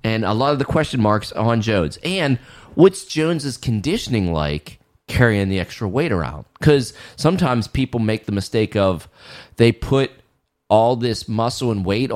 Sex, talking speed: male, 165 wpm